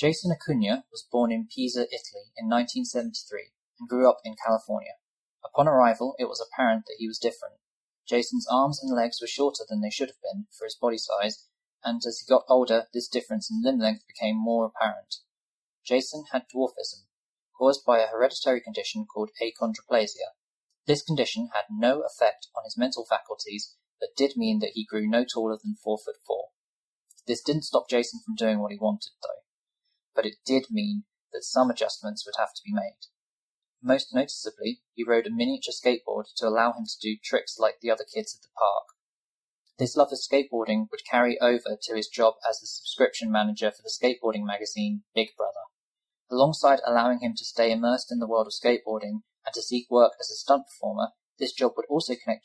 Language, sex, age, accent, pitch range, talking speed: English, male, 20-39, British, 110-175 Hz, 190 wpm